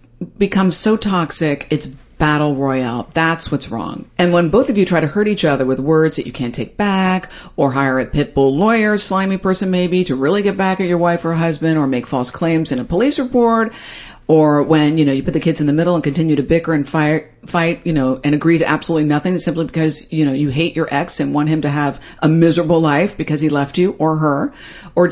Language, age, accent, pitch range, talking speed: English, 50-69, American, 145-190 Hz, 240 wpm